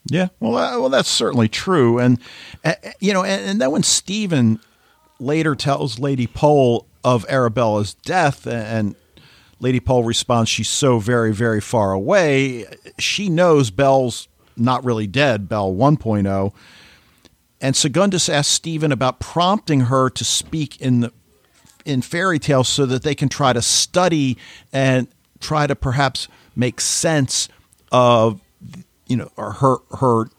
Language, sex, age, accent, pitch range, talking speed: English, male, 50-69, American, 115-145 Hz, 145 wpm